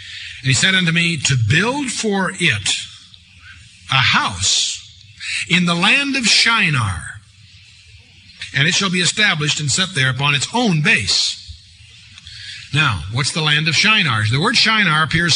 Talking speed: 150 wpm